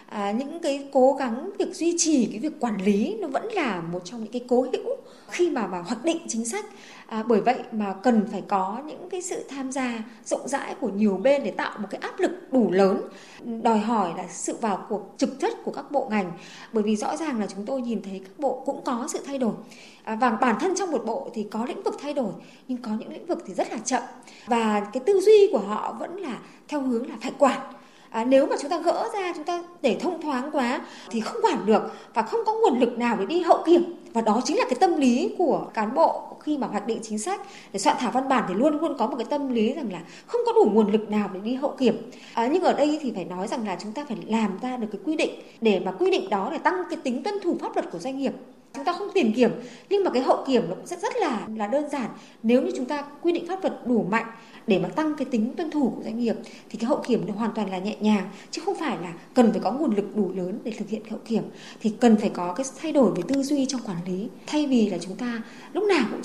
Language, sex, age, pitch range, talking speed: Vietnamese, female, 20-39, 220-300 Hz, 270 wpm